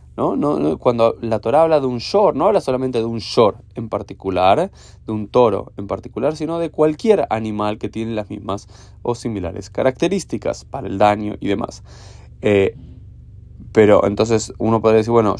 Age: 20-39